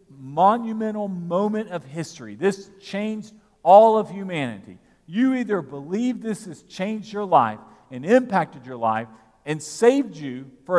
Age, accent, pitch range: 50-69, American, 165-240 Hz